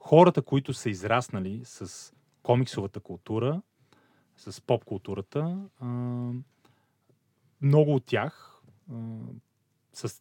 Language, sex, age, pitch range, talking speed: Bulgarian, male, 30-49, 105-140 Hz, 75 wpm